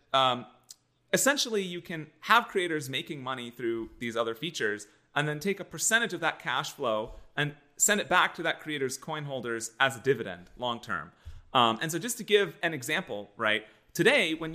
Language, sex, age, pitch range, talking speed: English, male, 30-49, 120-165 Hz, 190 wpm